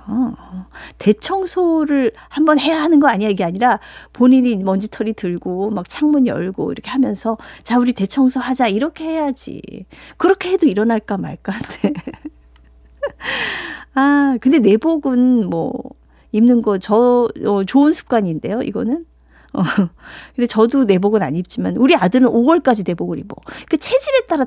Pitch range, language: 190-275 Hz, Korean